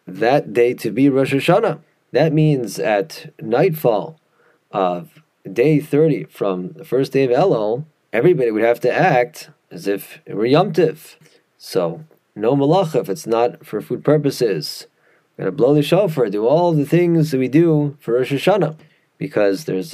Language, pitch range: English, 115-155 Hz